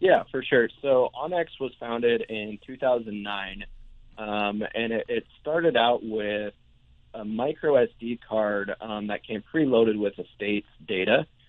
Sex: male